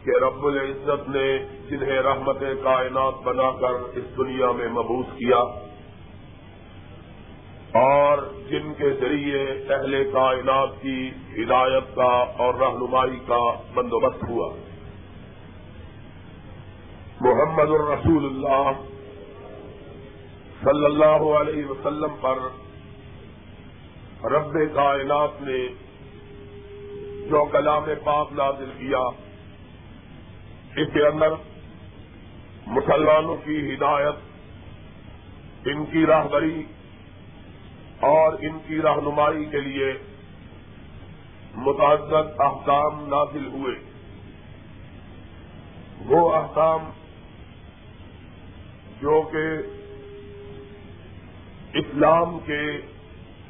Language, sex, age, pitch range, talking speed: Urdu, male, 50-69, 100-145 Hz, 75 wpm